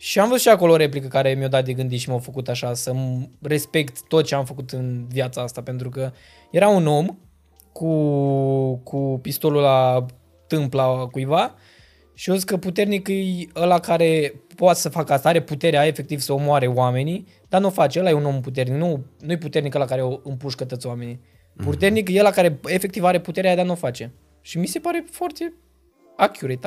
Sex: male